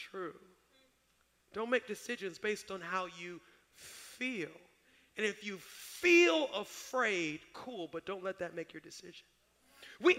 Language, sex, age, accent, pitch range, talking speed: English, male, 40-59, American, 200-260 Hz, 135 wpm